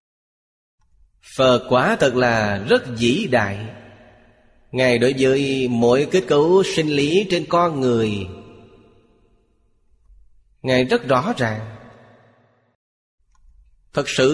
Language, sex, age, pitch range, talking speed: Vietnamese, male, 20-39, 120-150 Hz, 100 wpm